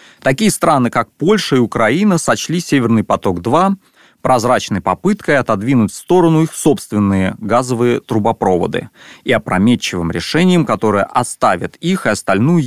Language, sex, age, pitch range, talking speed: Russian, male, 30-49, 105-170 Hz, 125 wpm